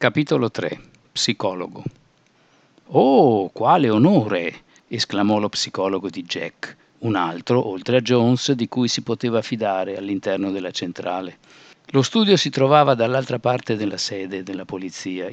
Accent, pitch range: native, 100-135 Hz